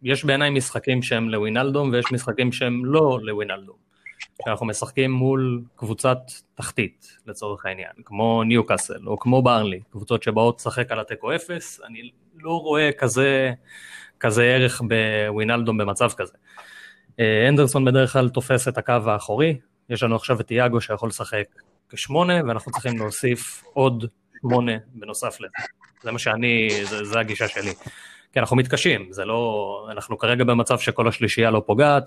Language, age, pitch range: Hebrew, 20-39, 110-135 Hz